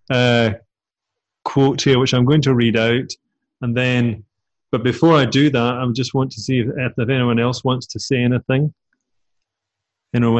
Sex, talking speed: male, 175 wpm